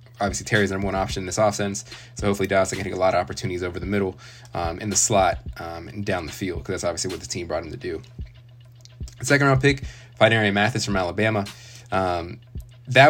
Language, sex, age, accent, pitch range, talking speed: English, male, 20-39, American, 100-115 Hz, 225 wpm